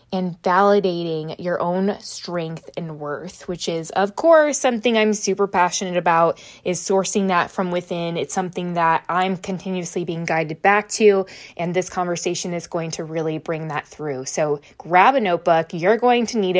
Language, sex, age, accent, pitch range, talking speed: English, female, 20-39, American, 170-205 Hz, 175 wpm